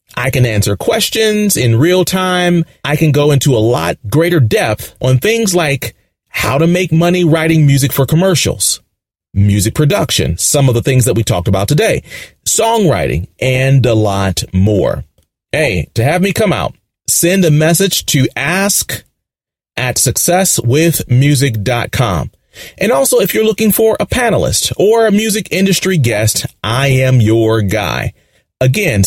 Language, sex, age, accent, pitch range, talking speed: English, male, 30-49, American, 110-170 Hz, 150 wpm